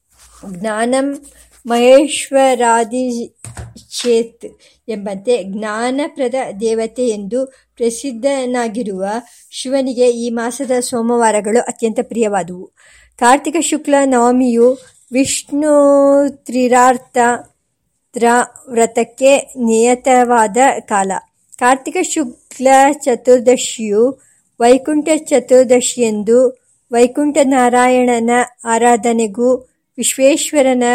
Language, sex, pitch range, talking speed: Kannada, male, 235-270 Hz, 60 wpm